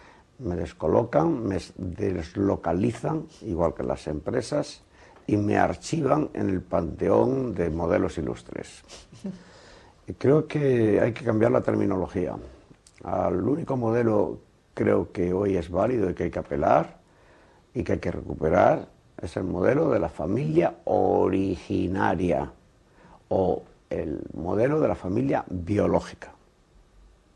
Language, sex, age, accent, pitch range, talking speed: Spanish, male, 60-79, Spanish, 95-125 Hz, 125 wpm